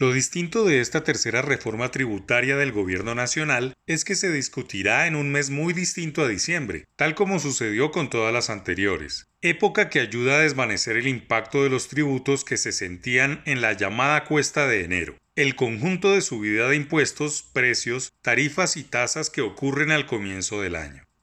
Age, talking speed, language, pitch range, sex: 30-49, 180 wpm, Spanish, 125-160 Hz, male